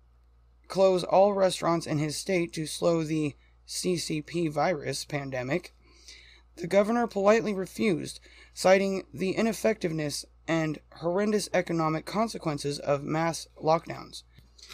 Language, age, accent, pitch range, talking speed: English, 20-39, American, 150-190 Hz, 105 wpm